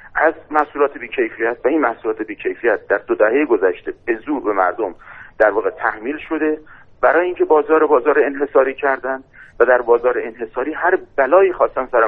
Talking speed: 160 wpm